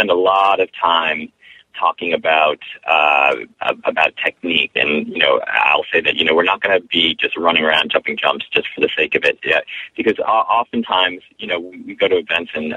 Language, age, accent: English, 30-49, American